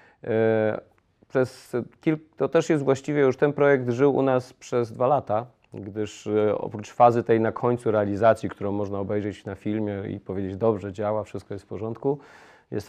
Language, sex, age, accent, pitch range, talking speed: Polish, male, 30-49, native, 105-120 Hz, 170 wpm